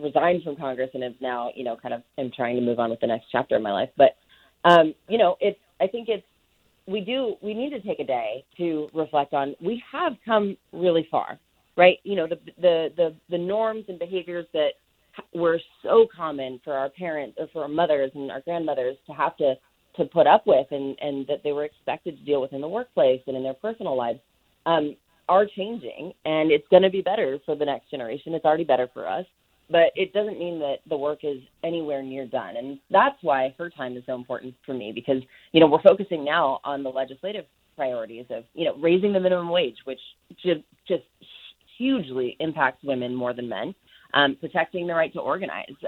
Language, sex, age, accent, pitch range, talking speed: English, female, 30-49, American, 135-175 Hz, 215 wpm